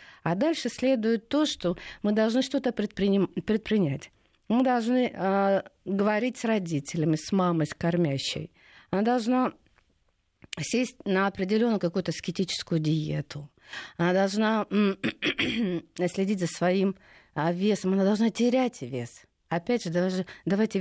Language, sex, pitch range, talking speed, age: Russian, female, 160-205 Hz, 135 wpm, 40-59